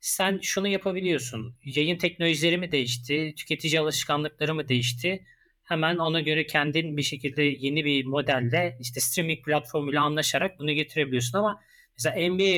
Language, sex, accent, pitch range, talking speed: Turkish, male, native, 135-170 Hz, 140 wpm